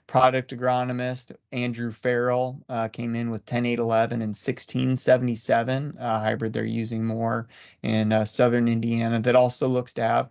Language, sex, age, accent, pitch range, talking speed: English, male, 20-39, American, 115-125 Hz, 145 wpm